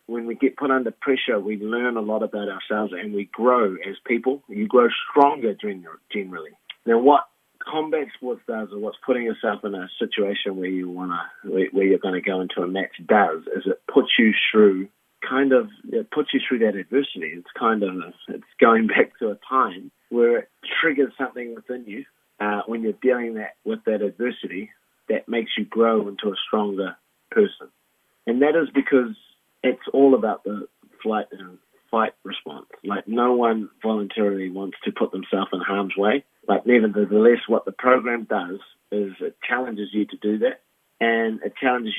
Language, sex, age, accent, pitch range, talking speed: English, male, 30-49, Australian, 105-130 Hz, 185 wpm